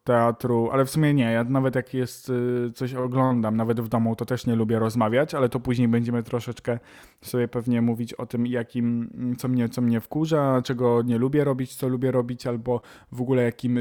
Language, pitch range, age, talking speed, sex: Polish, 120-145 Hz, 20-39, 200 wpm, male